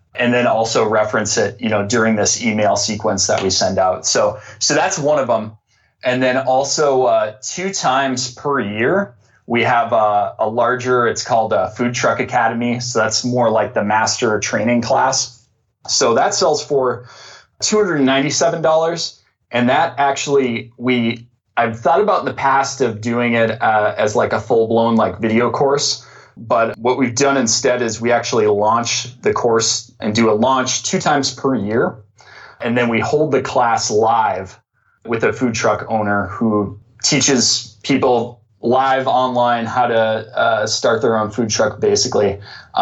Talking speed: 175 wpm